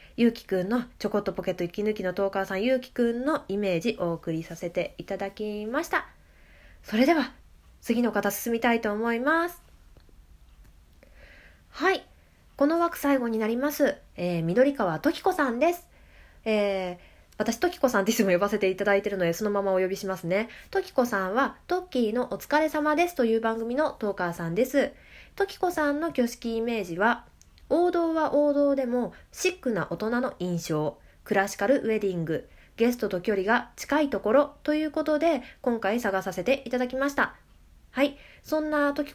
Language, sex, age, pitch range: Japanese, female, 20-39, 195-285 Hz